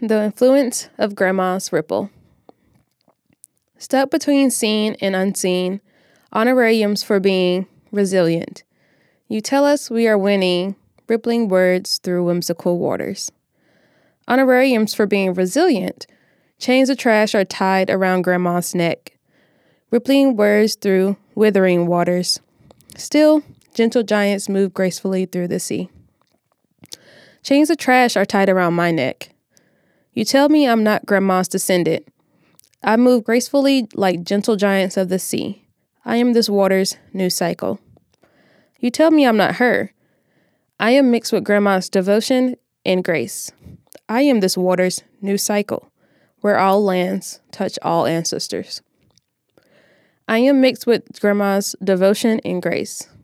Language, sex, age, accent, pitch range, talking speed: English, female, 20-39, American, 185-240 Hz, 130 wpm